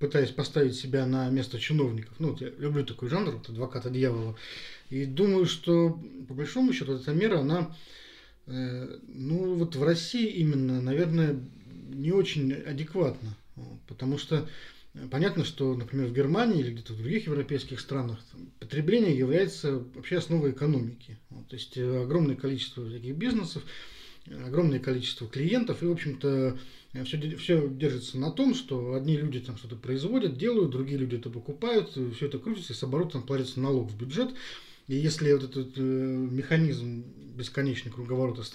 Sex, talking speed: male, 155 wpm